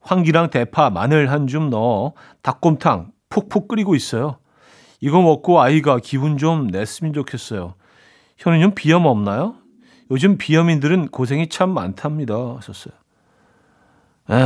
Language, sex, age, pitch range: Korean, male, 40-59, 130-165 Hz